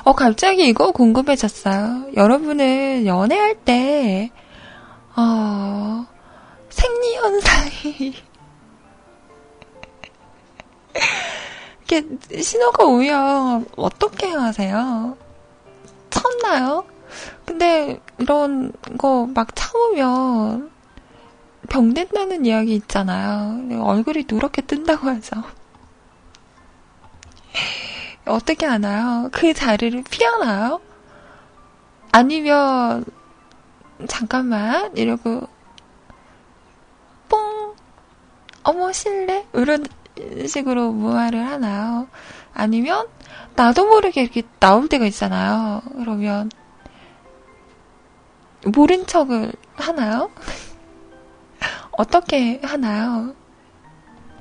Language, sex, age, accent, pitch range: Korean, female, 20-39, native, 220-295 Hz